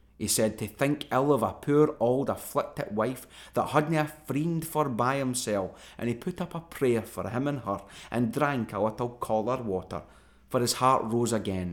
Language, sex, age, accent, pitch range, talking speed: English, male, 20-39, British, 100-125 Hz, 200 wpm